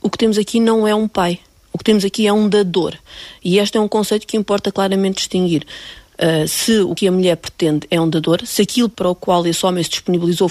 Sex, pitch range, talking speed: female, 170-210 Hz, 240 wpm